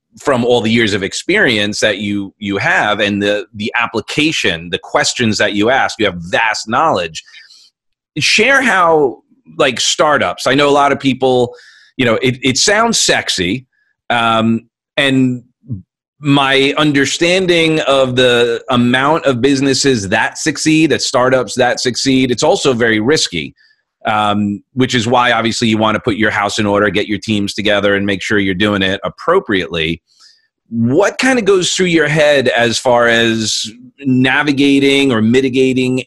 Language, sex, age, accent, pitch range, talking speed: English, male, 30-49, American, 105-140 Hz, 160 wpm